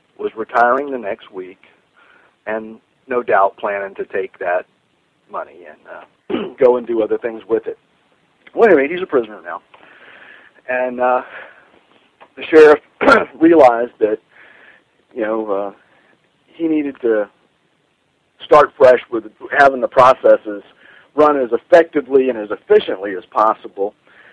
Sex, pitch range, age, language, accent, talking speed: male, 115-185 Hz, 50-69, English, American, 135 wpm